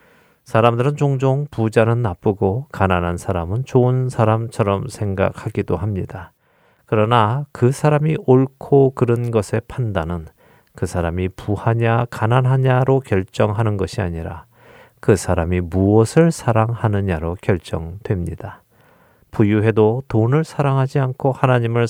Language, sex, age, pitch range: Korean, male, 40-59, 95-130 Hz